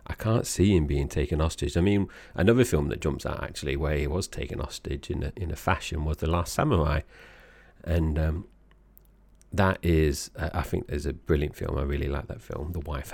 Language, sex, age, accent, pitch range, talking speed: English, male, 40-59, British, 75-90 Hz, 215 wpm